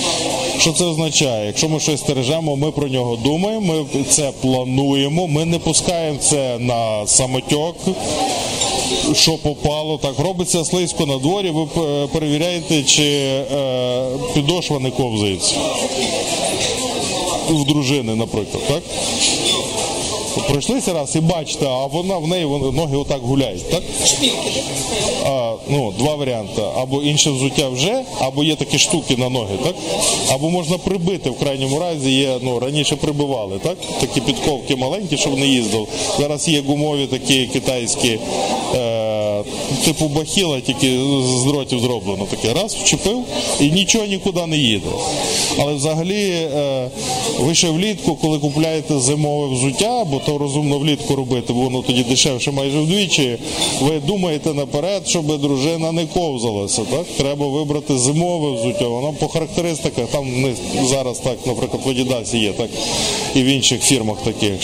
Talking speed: 140 wpm